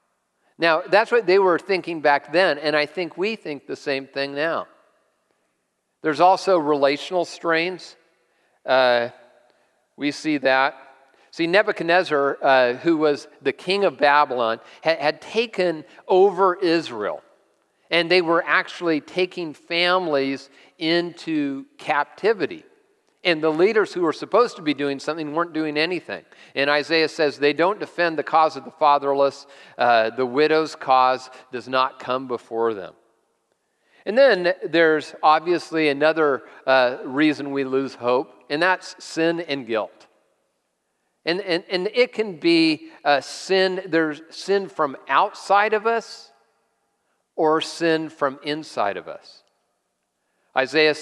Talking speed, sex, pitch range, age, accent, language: 135 wpm, male, 140-180 Hz, 50-69, American, English